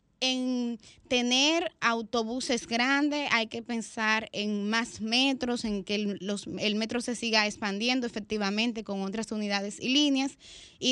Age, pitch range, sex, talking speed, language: 20-39, 210-260 Hz, female, 135 wpm, Spanish